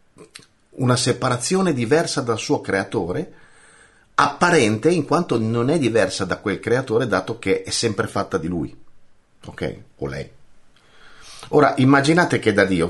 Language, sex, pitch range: Italian, male, 105-160 Hz